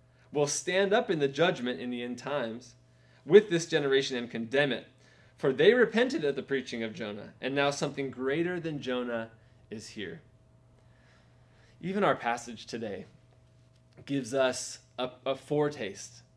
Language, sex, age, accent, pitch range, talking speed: English, male, 20-39, American, 125-175 Hz, 150 wpm